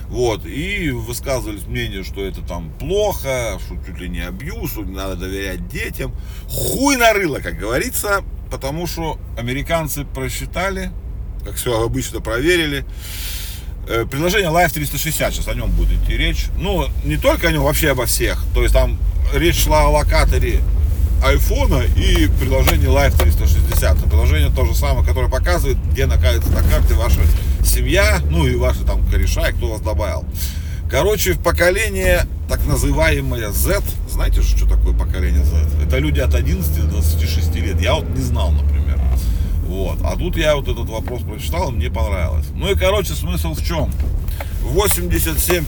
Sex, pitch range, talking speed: male, 75-90 Hz, 155 wpm